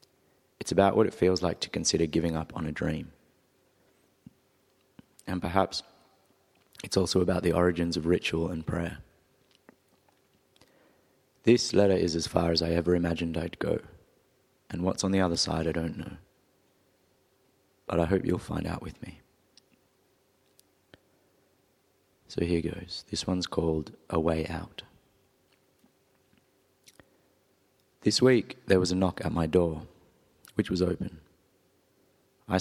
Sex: male